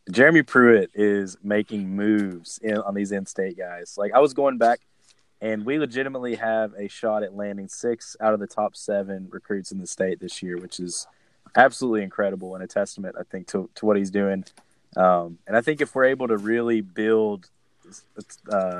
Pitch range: 95-110 Hz